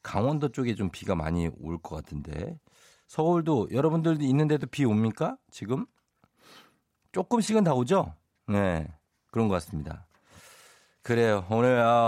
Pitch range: 95-135 Hz